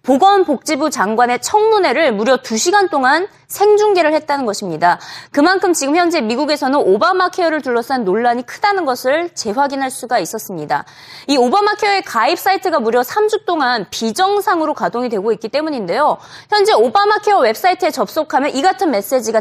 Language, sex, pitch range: Korean, female, 240-365 Hz